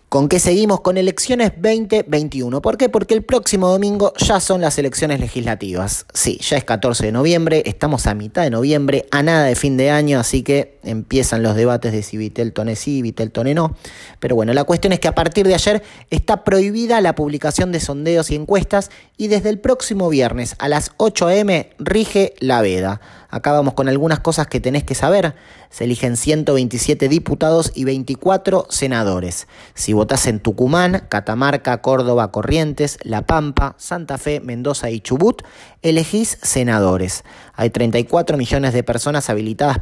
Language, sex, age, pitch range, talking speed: Spanish, male, 30-49, 115-170 Hz, 170 wpm